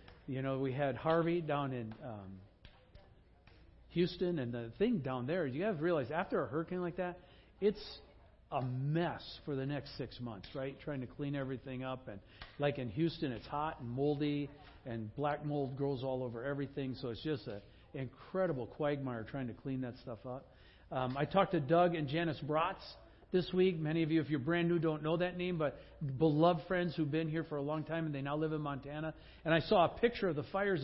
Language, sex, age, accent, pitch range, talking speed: English, male, 50-69, American, 135-180 Hz, 210 wpm